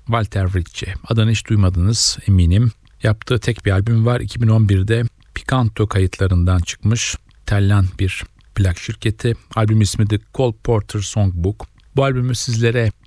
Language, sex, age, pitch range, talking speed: Turkish, male, 40-59, 95-115 Hz, 125 wpm